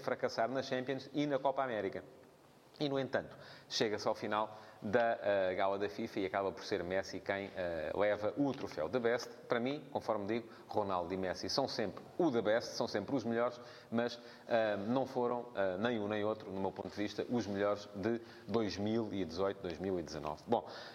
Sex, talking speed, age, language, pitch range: male, 175 wpm, 30-49, English, 95-130 Hz